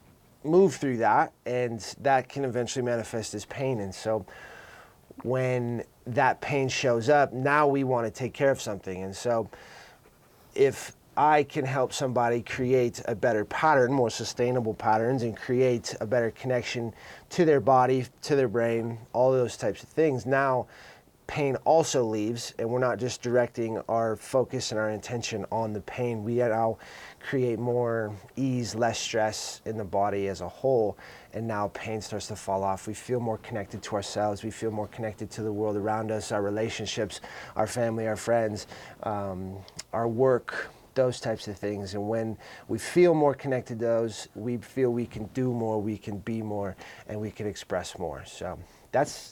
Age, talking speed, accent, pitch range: 30-49, 180 wpm, American, 105-125 Hz